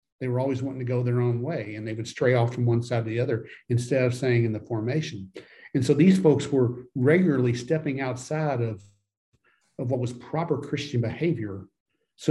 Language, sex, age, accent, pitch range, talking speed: English, male, 50-69, American, 120-140 Hz, 205 wpm